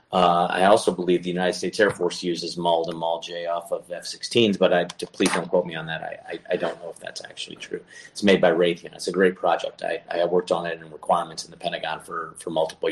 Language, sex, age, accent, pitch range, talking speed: English, male, 30-49, American, 90-95 Hz, 255 wpm